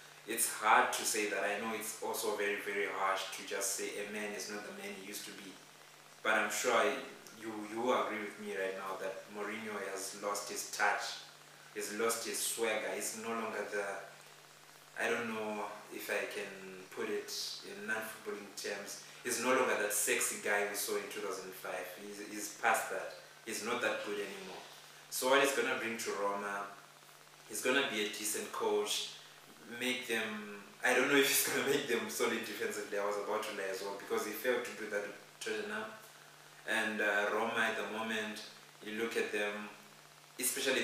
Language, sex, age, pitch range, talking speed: English, male, 20-39, 100-115 Hz, 195 wpm